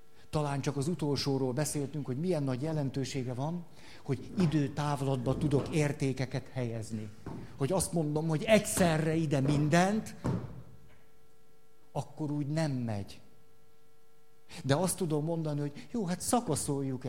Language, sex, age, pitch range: Hungarian, male, 50-69, 125-160 Hz